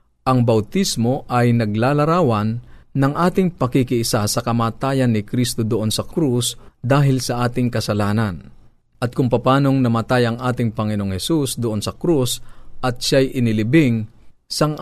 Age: 40-59